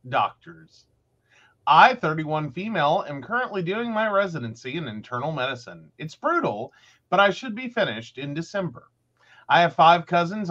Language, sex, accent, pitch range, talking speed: English, male, American, 120-190 Hz, 145 wpm